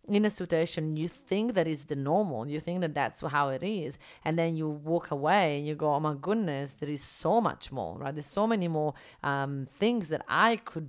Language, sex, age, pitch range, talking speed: English, female, 30-49, 140-175 Hz, 230 wpm